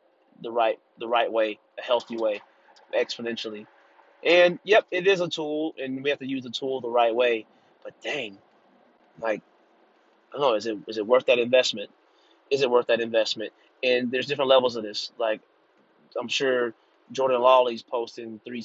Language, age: English, 30-49